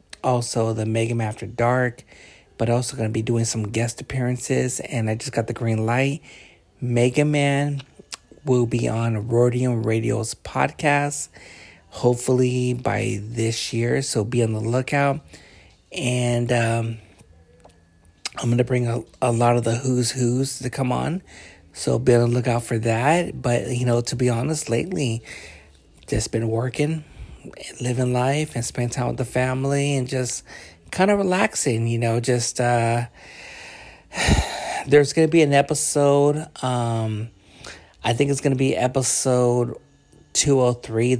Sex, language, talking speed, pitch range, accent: male, English, 150 wpm, 115-130 Hz, American